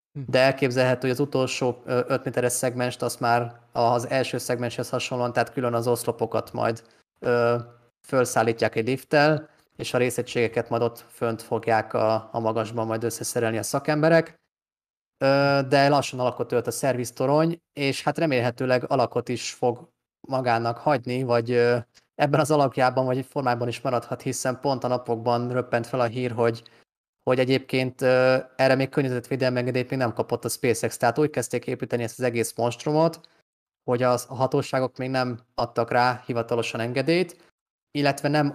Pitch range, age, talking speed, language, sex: 120-130 Hz, 20-39, 155 wpm, Hungarian, male